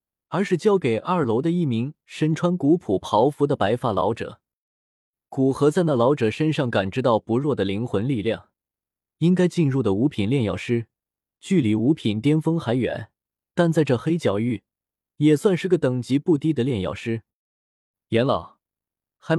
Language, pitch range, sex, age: Chinese, 110-160 Hz, male, 20-39